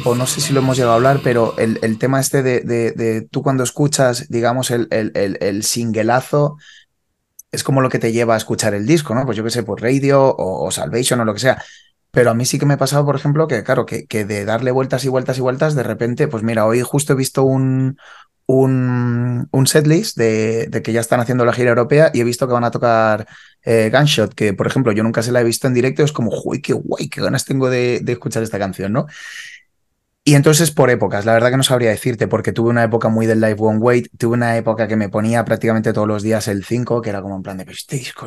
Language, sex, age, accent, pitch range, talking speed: Spanish, male, 20-39, Spanish, 110-130 Hz, 260 wpm